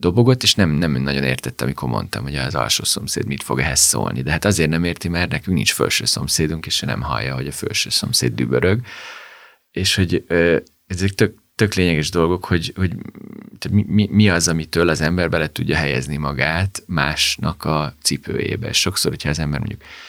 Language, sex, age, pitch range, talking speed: Hungarian, male, 30-49, 75-95 Hz, 185 wpm